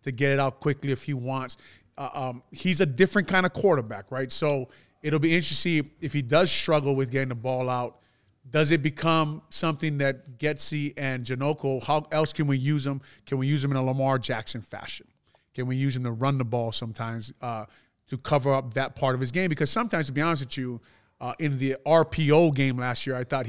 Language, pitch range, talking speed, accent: English, 130-150 Hz, 225 wpm, American